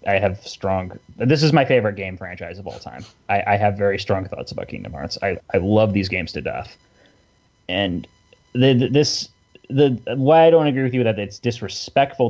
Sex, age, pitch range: male, 20-39, 100-125 Hz